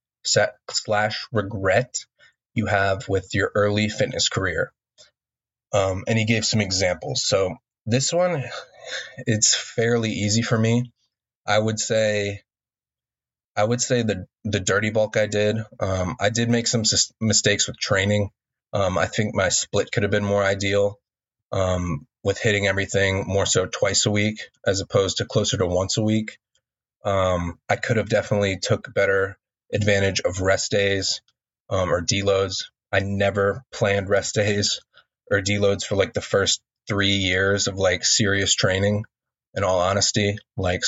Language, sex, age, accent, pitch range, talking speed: English, male, 20-39, American, 95-110 Hz, 155 wpm